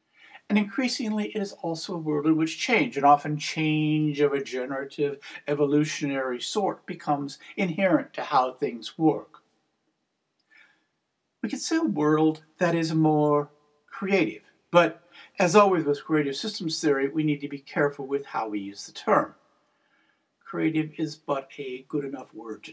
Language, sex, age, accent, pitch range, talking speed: English, male, 60-79, American, 135-165 Hz, 155 wpm